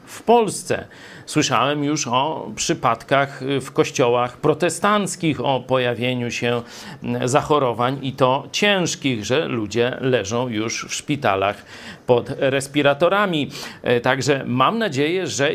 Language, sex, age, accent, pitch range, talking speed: Polish, male, 40-59, native, 125-155 Hz, 110 wpm